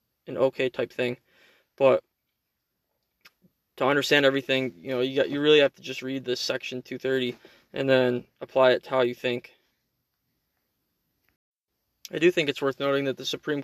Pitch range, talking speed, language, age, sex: 125-135 Hz, 165 wpm, English, 20-39, male